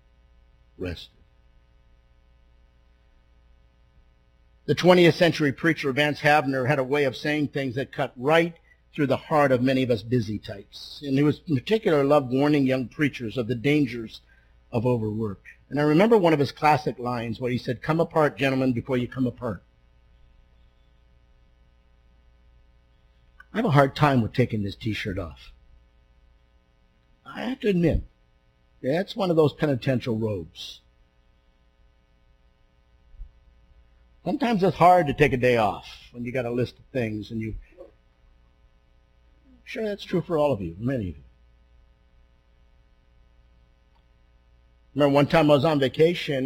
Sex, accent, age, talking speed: male, American, 50-69, 145 wpm